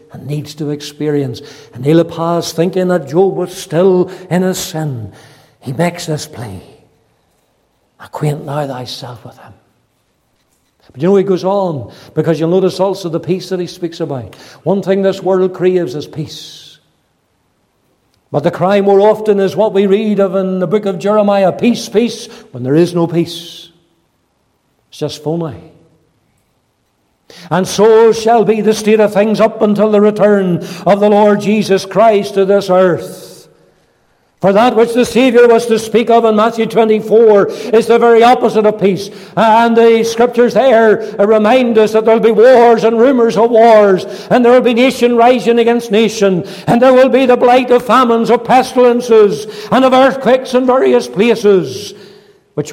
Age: 60-79